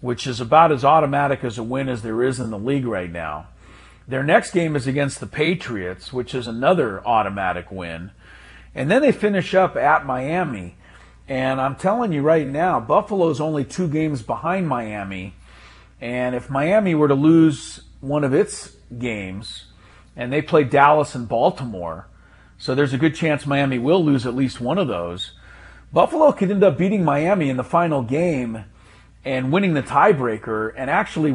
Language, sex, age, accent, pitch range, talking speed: English, male, 40-59, American, 120-160 Hz, 175 wpm